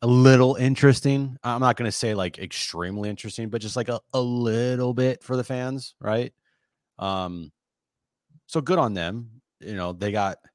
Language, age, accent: English, 30-49, American